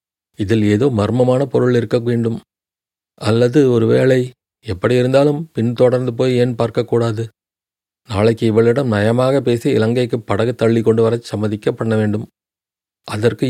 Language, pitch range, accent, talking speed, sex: Tamil, 105-125 Hz, native, 115 wpm, male